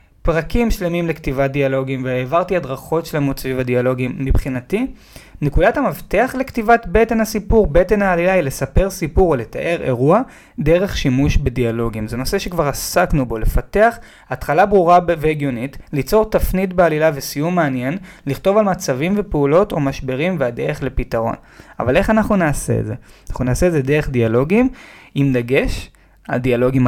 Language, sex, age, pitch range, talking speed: Hebrew, male, 20-39, 135-180 Hz, 145 wpm